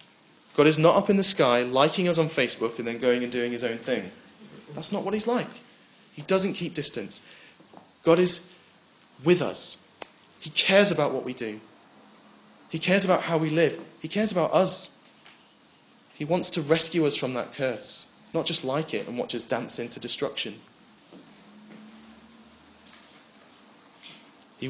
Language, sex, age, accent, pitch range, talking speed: English, male, 30-49, British, 120-175 Hz, 165 wpm